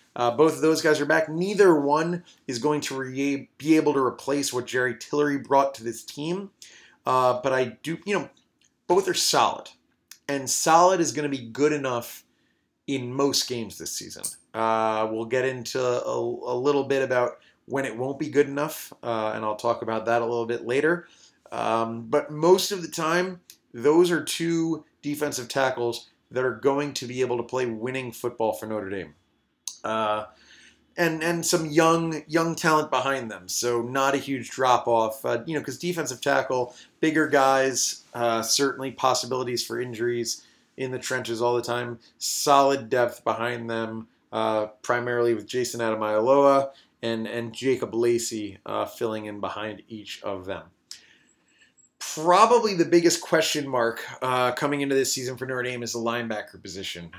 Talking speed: 175 wpm